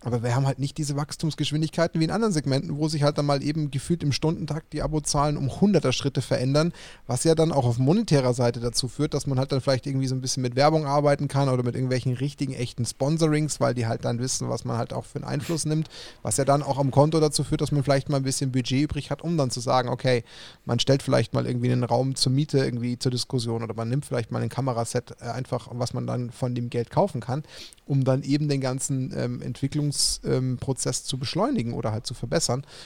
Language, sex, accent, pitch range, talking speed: German, male, German, 125-145 Hz, 240 wpm